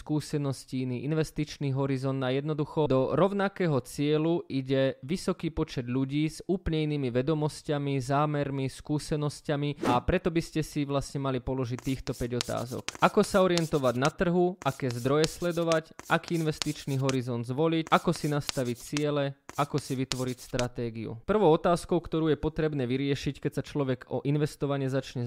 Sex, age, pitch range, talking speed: male, 20-39, 130-155 Hz, 145 wpm